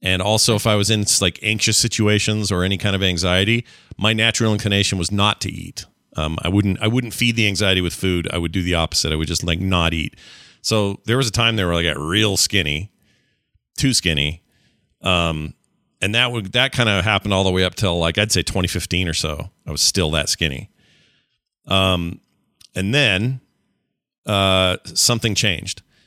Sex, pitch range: male, 90-110 Hz